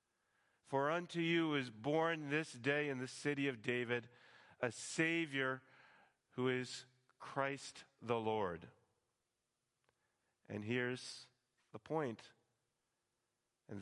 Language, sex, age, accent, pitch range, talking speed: English, male, 40-59, American, 120-145 Hz, 105 wpm